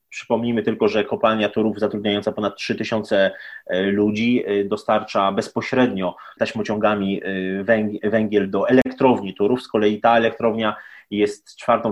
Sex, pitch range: male, 105-115 Hz